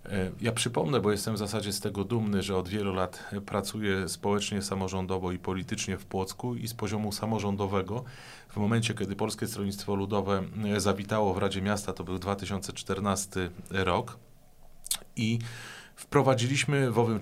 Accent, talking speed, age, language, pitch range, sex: native, 145 wpm, 30-49, Polish, 100-115 Hz, male